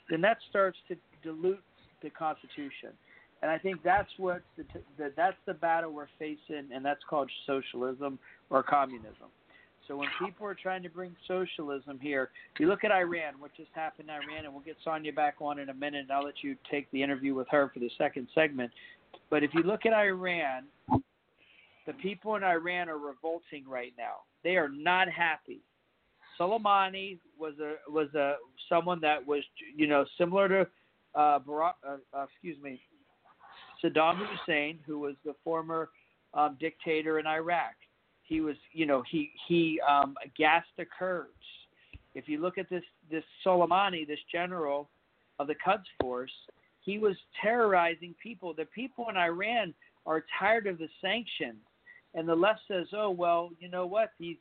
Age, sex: 50-69, male